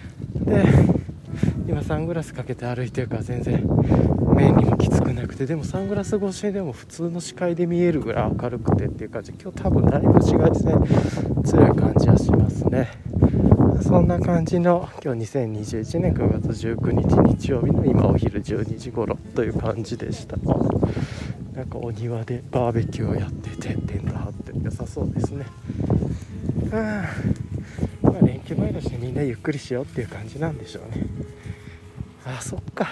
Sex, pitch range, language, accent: male, 110-135 Hz, Japanese, native